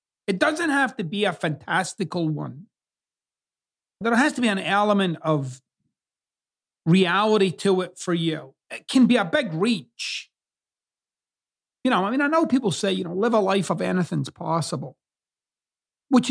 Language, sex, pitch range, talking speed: English, male, 160-205 Hz, 160 wpm